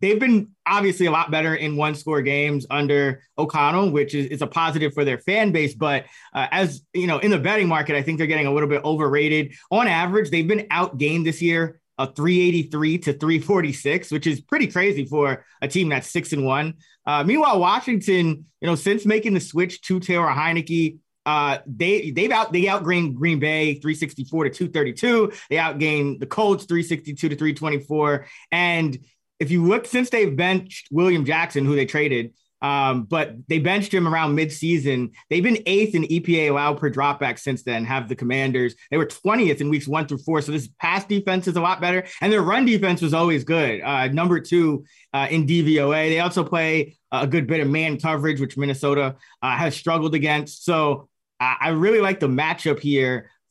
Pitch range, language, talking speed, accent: 145-175 Hz, English, 200 wpm, American